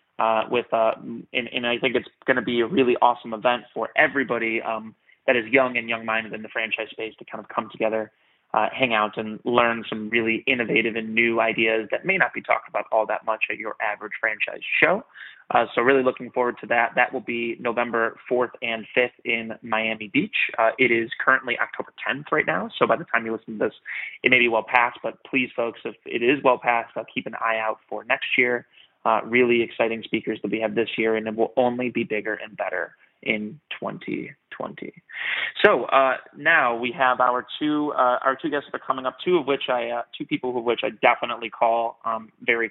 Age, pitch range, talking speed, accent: 20-39, 110-125 Hz, 220 wpm, American